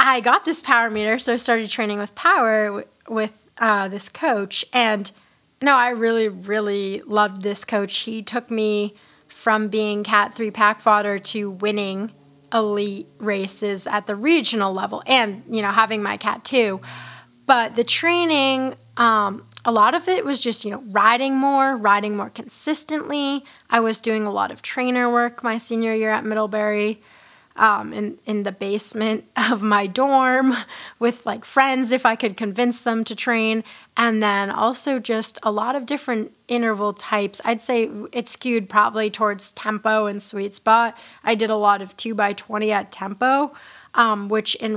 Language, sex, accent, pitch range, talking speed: English, female, American, 210-245 Hz, 170 wpm